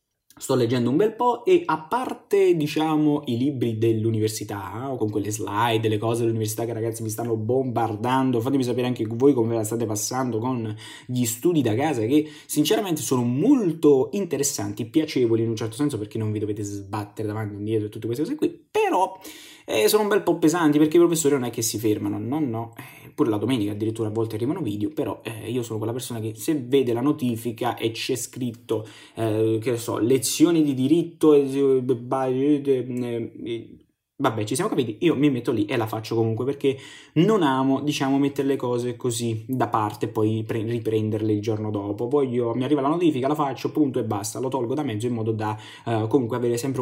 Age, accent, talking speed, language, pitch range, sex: 20-39, native, 200 wpm, Italian, 110-150 Hz, male